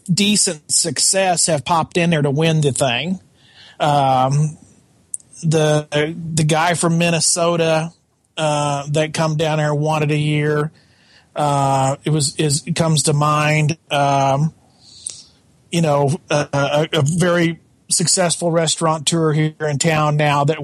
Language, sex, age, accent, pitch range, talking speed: English, male, 40-59, American, 150-170 Hz, 135 wpm